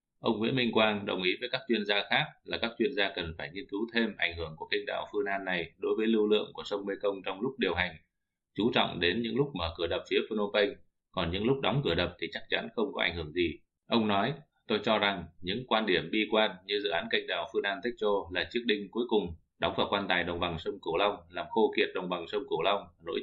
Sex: male